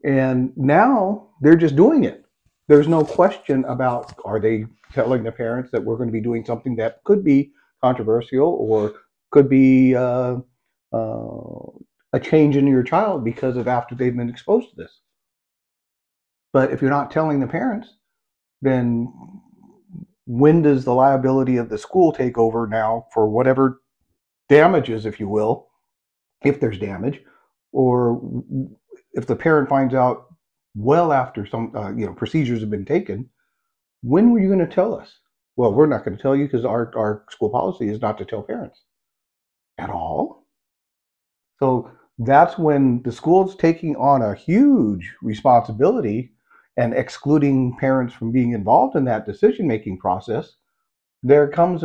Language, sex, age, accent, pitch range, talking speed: English, male, 40-59, American, 115-155 Hz, 155 wpm